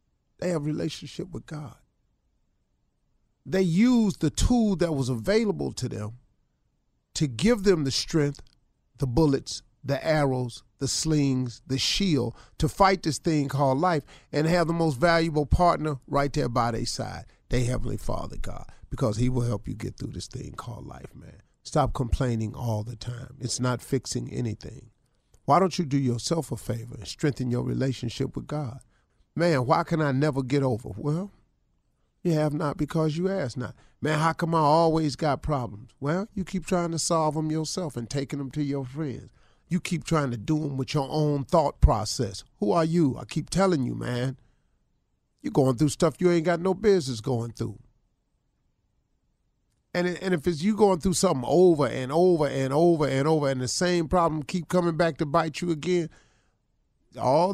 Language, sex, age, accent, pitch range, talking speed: English, male, 40-59, American, 125-170 Hz, 180 wpm